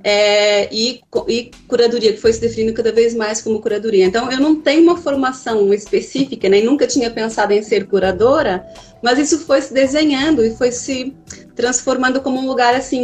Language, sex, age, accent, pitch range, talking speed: Portuguese, female, 30-49, Brazilian, 195-265 Hz, 190 wpm